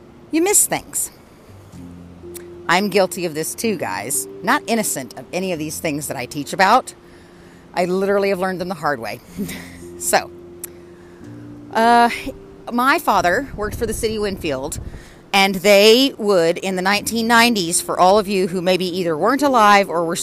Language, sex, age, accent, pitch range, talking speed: English, female, 40-59, American, 150-220 Hz, 165 wpm